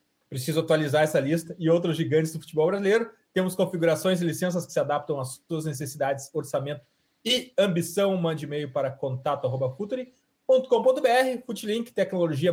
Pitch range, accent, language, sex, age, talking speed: 155-190 Hz, Brazilian, Portuguese, male, 40-59, 140 wpm